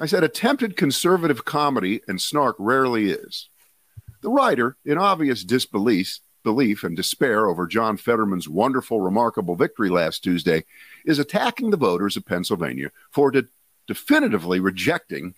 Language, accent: English, American